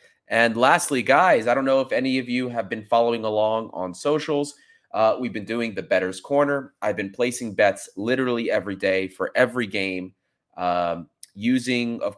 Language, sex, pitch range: English, male, 95-135 Hz